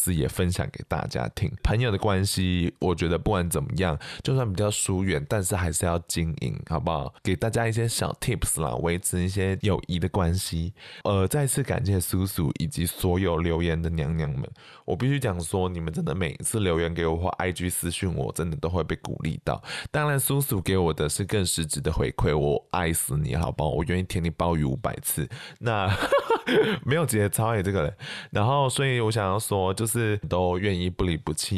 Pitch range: 85-110 Hz